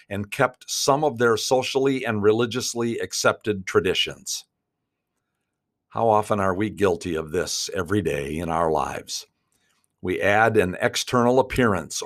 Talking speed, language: 135 wpm, English